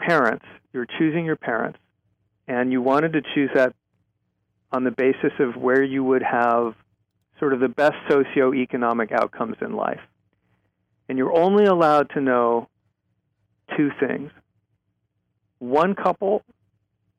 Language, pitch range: English, 110-145 Hz